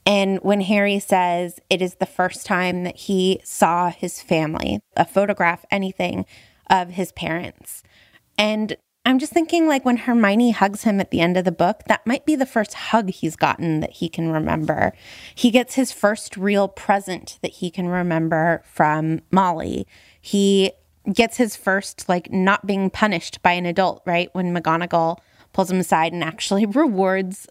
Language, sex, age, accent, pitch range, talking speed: English, female, 20-39, American, 175-220 Hz, 170 wpm